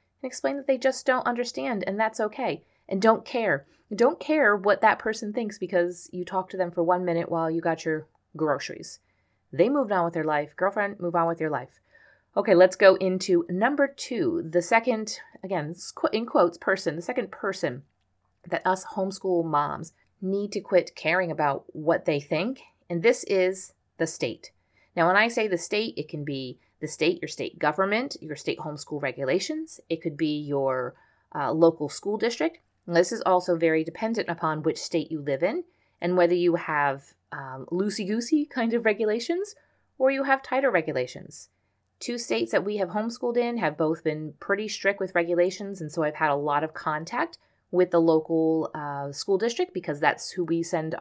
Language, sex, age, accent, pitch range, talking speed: English, female, 30-49, American, 160-220 Hz, 190 wpm